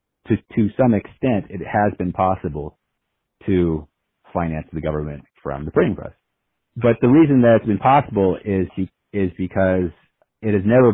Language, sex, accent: English, male, American